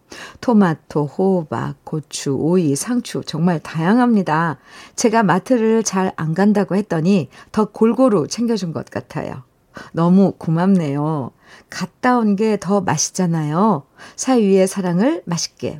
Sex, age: female, 50-69